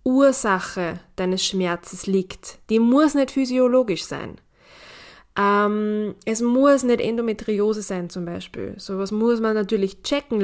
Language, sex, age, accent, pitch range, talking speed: German, female, 20-39, German, 180-215 Hz, 125 wpm